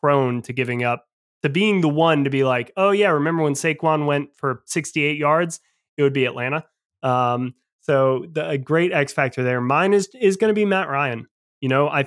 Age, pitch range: 20-39, 130-160 Hz